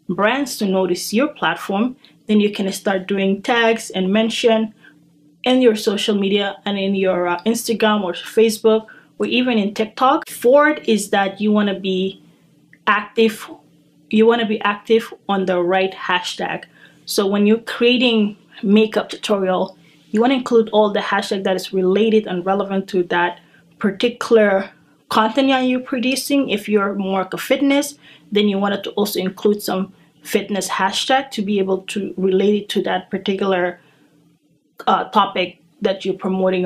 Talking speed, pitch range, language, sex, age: 165 wpm, 185-220 Hz, English, female, 20-39